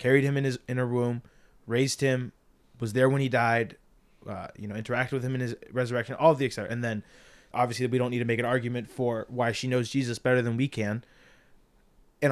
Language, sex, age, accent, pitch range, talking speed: English, male, 20-39, American, 110-130 Hz, 225 wpm